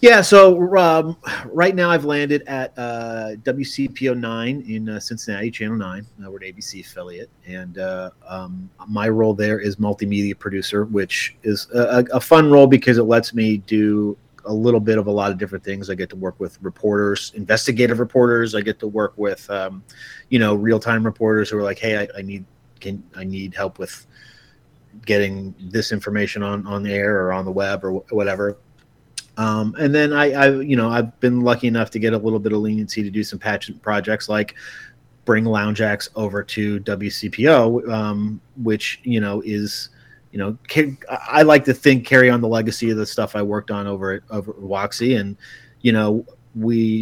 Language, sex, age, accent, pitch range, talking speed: English, male, 30-49, American, 105-120 Hz, 200 wpm